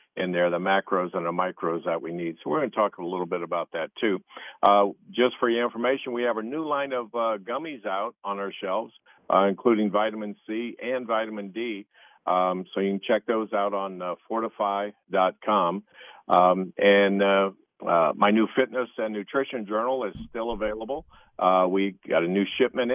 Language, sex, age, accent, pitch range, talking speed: English, male, 50-69, American, 95-115 Hz, 190 wpm